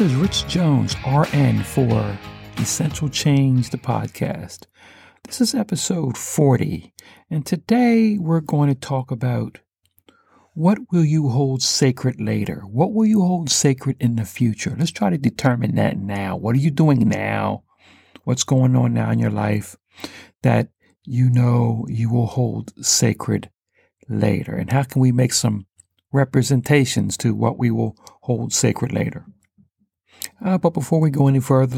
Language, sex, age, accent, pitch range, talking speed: English, male, 60-79, American, 120-150 Hz, 155 wpm